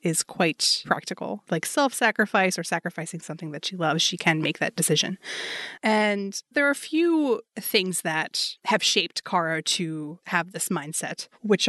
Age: 20-39